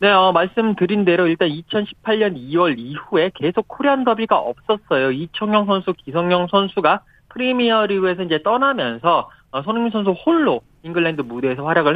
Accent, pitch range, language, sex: native, 150-210 Hz, Korean, male